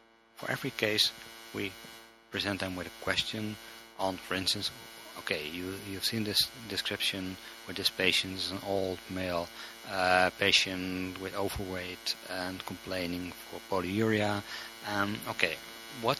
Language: English